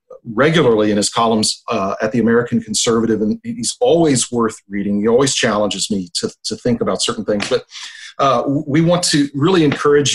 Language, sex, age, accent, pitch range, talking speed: English, male, 40-59, American, 115-155 Hz, 185 wpm